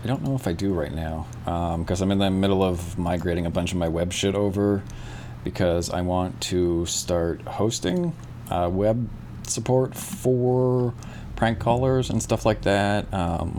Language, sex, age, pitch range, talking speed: English, male, 30-49, 85-110 Hz, 175 wpm